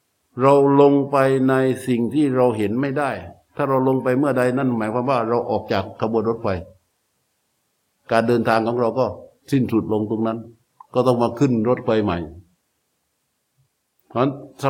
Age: 60-79